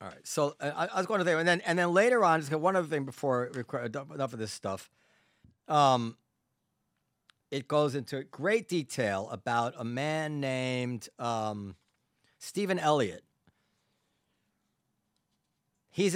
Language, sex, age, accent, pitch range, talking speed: English, male, 40-59, American, 125-155 Hz, 150 wpm